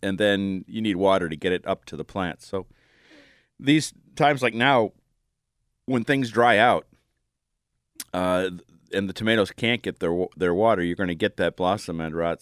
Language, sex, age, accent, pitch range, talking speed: English, male, 40-59, American, 95-115 Hz, 185 wpm